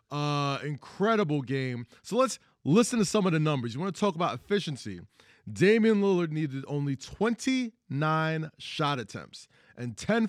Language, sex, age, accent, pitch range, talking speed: English, male, 20-39, American, 130-200 Hz, 150 wpm